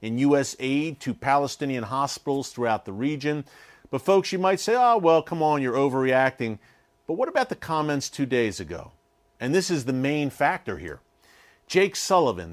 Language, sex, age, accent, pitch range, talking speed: English, male, 50-69, American, 125-165 Hz, 170 wpm